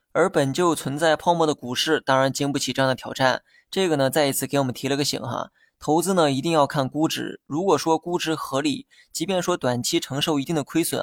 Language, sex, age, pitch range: Chinese, male, 20-39, 135-160 Hz